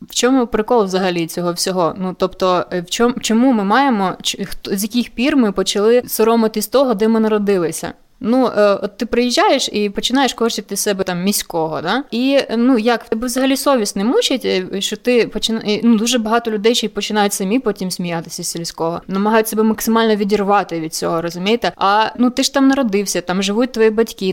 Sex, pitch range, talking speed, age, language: female, 195-230 Hz, 180 wpm, 20-39, Ukrainian